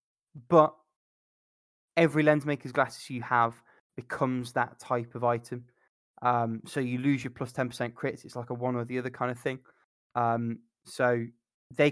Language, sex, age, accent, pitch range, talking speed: English, male, 20-39, British, 120-135 Hz, 165 wpm